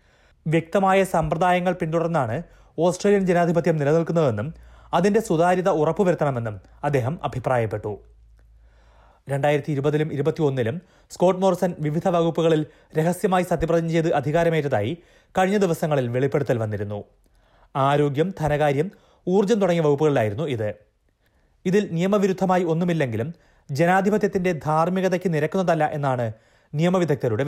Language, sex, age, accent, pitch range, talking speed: Malayalam, male, 30-49, native, 140-175 Hz, 90 wpm